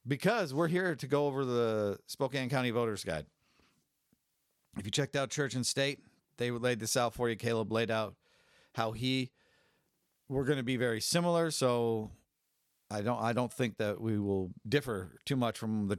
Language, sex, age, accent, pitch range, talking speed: English, male, 50-69, American, 110-135 Hz, 180 wpm